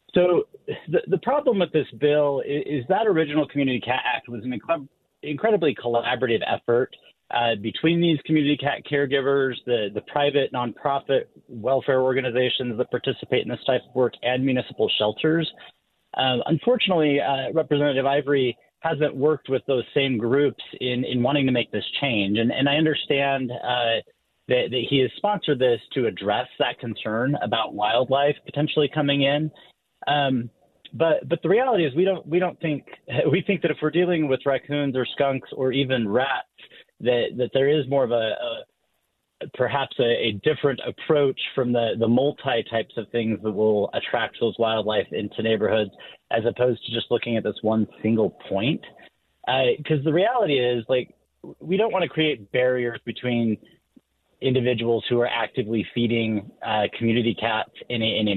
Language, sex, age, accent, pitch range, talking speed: English, male, 30-49, American, 120-150 Hz, 170 wpm